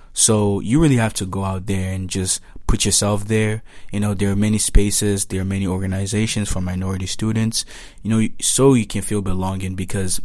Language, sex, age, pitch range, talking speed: English, male, 20-39, 95-110 Hz, 200 wpm